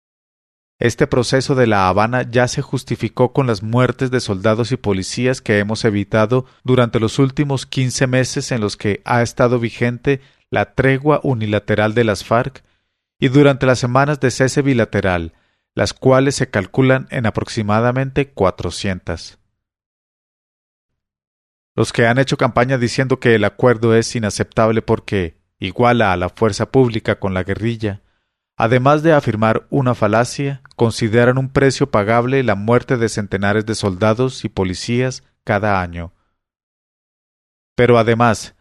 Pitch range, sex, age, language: 100-130 Hz, male, 40-59, English